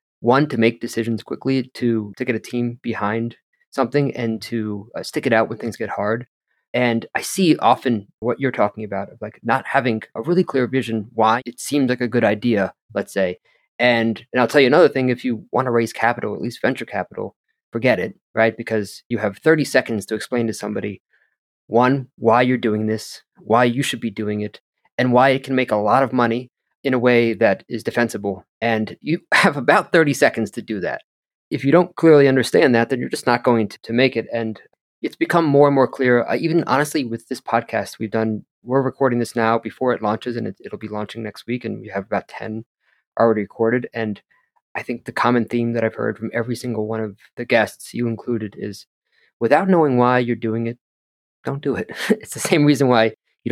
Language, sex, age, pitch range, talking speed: English, male, 20-39, 110-130 Hz, 220 wpm